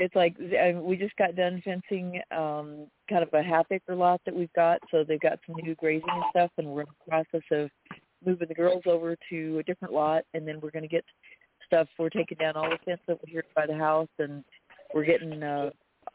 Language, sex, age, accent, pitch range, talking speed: English, female, 40-59, American, 155-185 Hz, 230 wpm